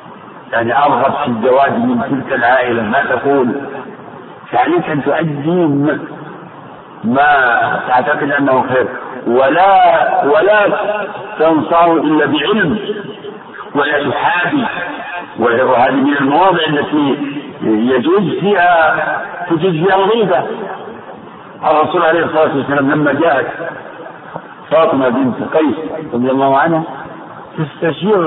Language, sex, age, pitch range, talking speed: Arabic, male, 50-69, 145-195 Hz, 100 wpm